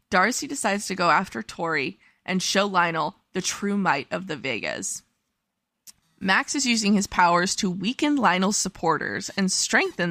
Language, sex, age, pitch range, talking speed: English, female, 20-39, 180-215 Hz, 155 wpm